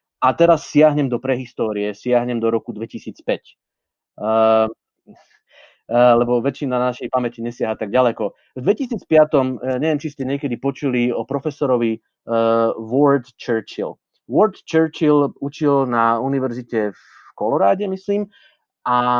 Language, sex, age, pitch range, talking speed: Slovak, male, 30-49, 110-145 Hz, 125 wpm